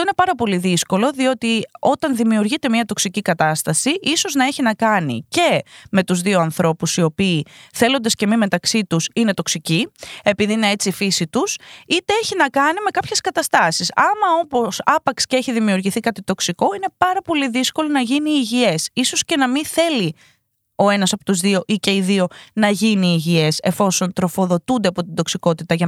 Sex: female